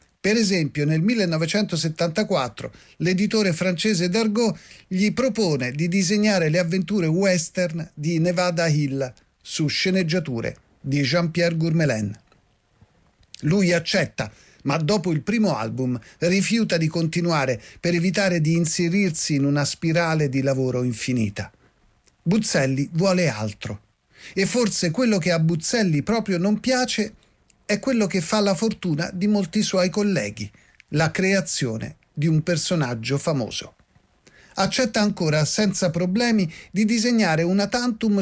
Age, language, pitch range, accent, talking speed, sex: 40-59, Italian, 145-195 Hz, native, 120 wpm, male